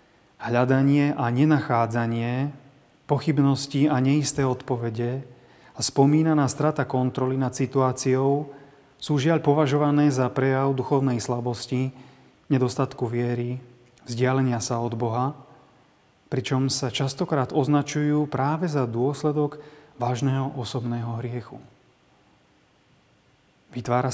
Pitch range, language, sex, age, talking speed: 125-145 Hz, Slovak, male, 30-49, 90 wpm